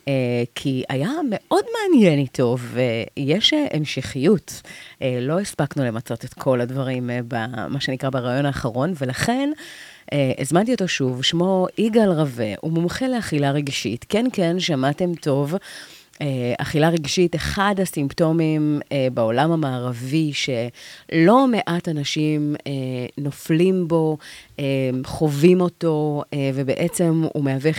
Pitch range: 140-195 Hz